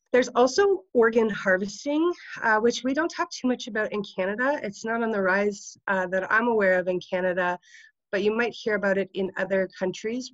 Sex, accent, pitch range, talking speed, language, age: female, American, 180-215 Hz, 205 wpm, English, 30-49